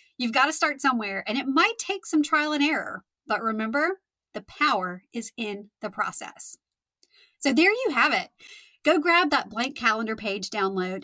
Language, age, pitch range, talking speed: English, 30-49, 205-300 Hz, 180 wpm